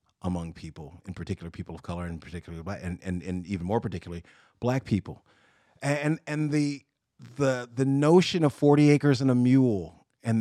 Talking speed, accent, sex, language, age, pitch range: 175 wpm, American, male, English, 40-59, 95-120 Hz